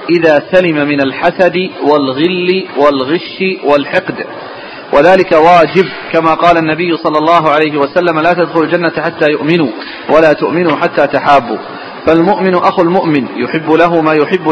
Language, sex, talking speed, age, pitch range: Arabic, male, 130 wpm, 40-59, 150-180 Hz